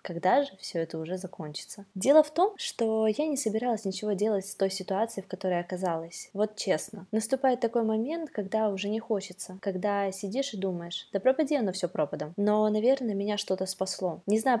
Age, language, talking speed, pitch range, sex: 20-39, Russian, 190 wpm, 185-225 Hz, female